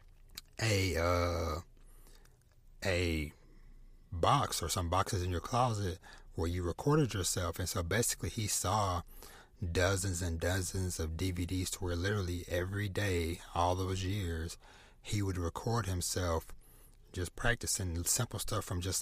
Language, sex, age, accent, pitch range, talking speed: English, male, 30-49, American, 85-100 Hz, 135 wpm